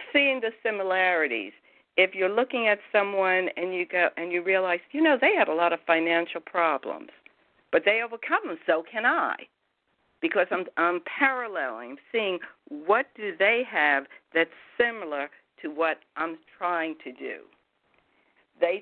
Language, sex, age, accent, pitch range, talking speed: English, female, 60-79, American, 170-255 Hz, 155 wpm